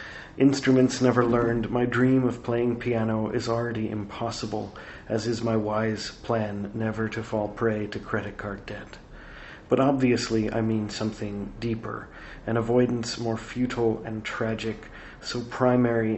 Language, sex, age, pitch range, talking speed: English, male, 40-59, 110-120 Hz, 140 wpm